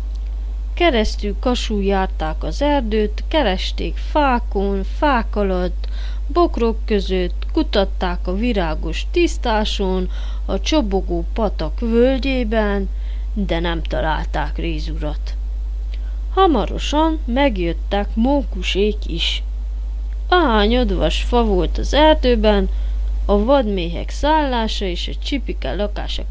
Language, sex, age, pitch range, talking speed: Hungarian, female, 30-49, 155-245 Hz, 85 wpm